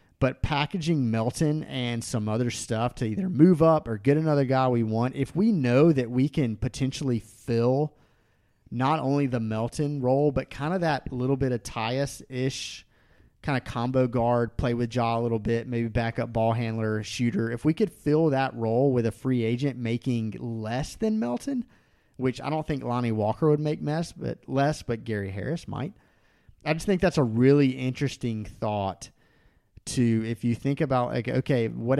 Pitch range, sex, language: 115-135 Hz, male, English